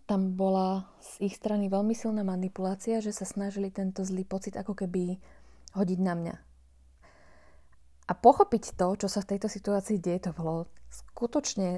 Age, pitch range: 20-39, 170-195 Hz